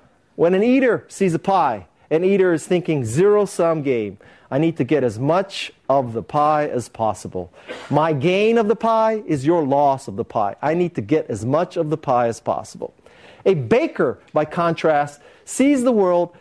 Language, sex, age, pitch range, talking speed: English, male, 50-69, 135-185 Hz, 190 wpm